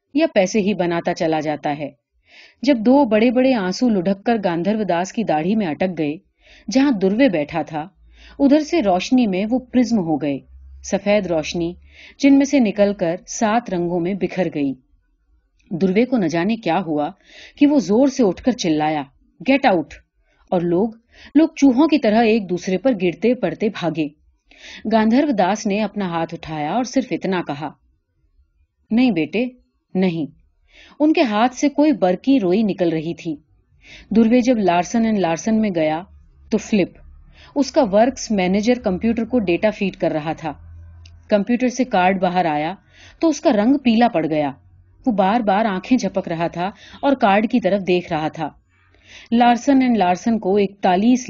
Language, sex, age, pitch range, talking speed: Urdu, female, 30-49, 160-240 Hz, 165 wpm